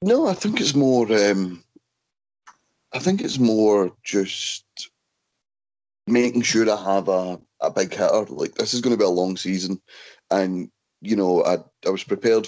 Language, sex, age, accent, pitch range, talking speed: English, male, 30-49, British, 90-110 Hz, 165 wpm